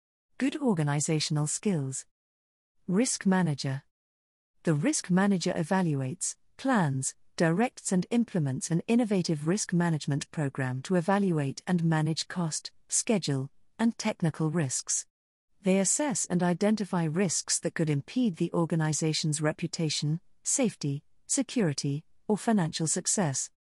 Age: 40-59